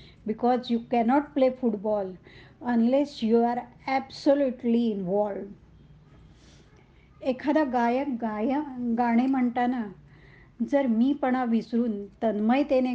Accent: native